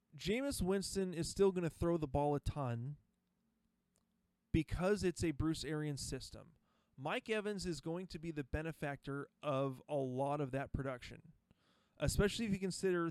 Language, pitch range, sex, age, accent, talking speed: English, 140-195 Hz, male, 30-49, American, 160 wpm